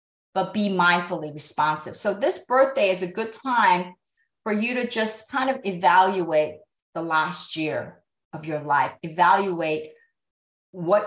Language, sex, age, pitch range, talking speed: English, female, 40-59, 150-190 Hz, 140 wpm